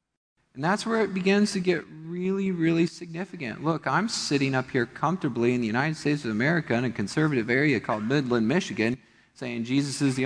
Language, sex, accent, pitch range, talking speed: English, male, American, 135-200 Hz, 195 wpm